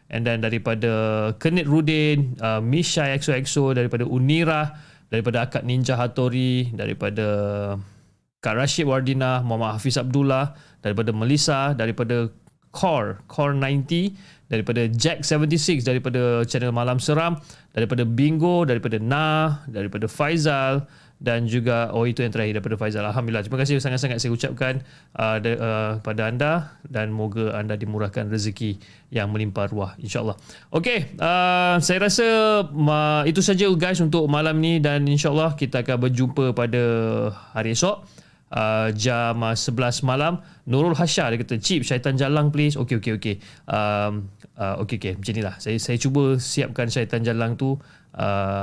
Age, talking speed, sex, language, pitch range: 30-49, 145 wpm, male, Malay, 110-150 Hz